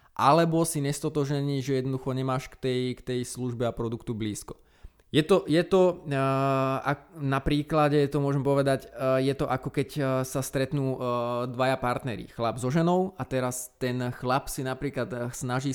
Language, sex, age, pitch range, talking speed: Slovak, male, 20-39, 120-135 Hz, 140 wpm